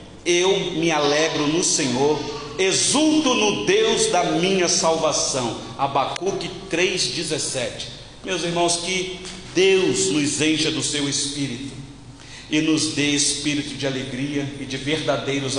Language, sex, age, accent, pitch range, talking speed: Portuguese, male, 40-59, Brazilian, 125-185 Hz, 120 wpm